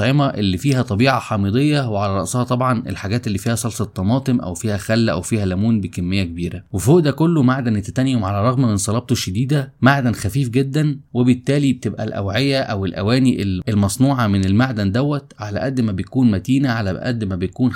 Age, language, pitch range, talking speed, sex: 20-39, Arabic, 105-140 Hz, 170 wpm, male